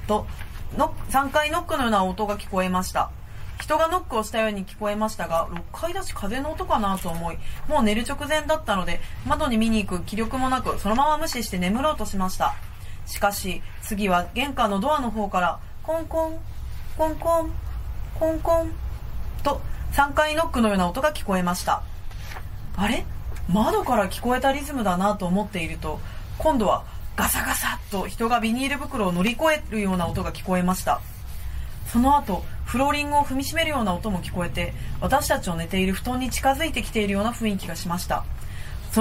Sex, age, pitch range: female, 30-49, 190-290 Hz